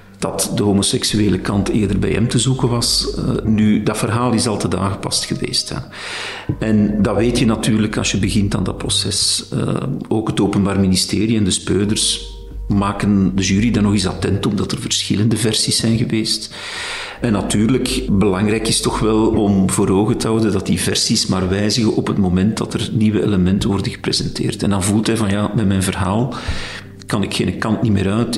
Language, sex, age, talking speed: Dutch, male, 50-69, 200 wpm